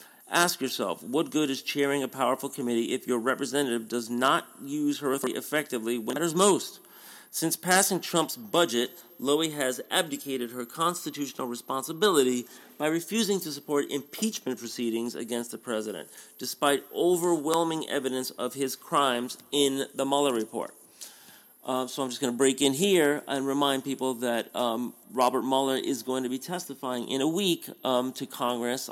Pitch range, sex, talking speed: 120-145 Hz, male, 160 wpm